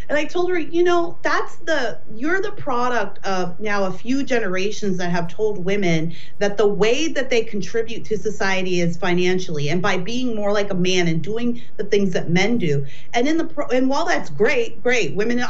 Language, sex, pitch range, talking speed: English, female, 190-270 Hz, 205 wpm